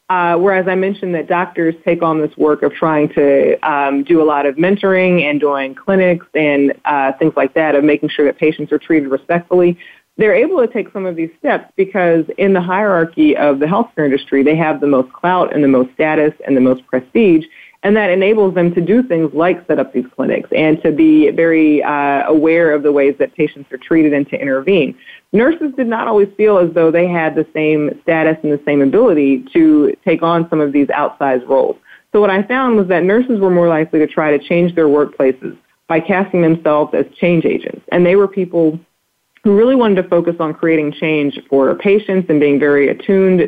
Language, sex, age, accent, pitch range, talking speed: English, female, 30-49, American, 145-190 Hz, 215 wpm